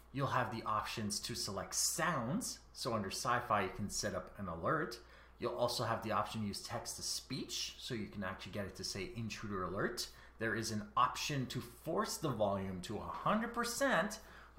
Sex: male